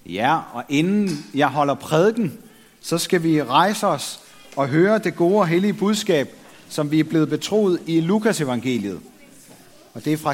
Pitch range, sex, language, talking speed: 135-185 Hz, male, Danish, 170 wpm